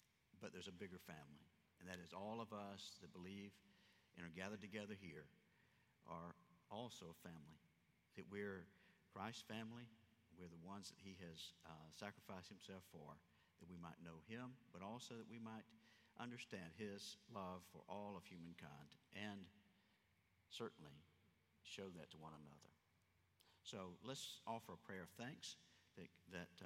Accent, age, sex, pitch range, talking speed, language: American, 50-69, male, 90-110 Hz, 155 wpm, English